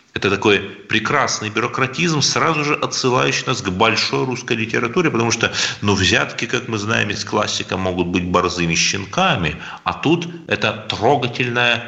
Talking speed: 145 wpm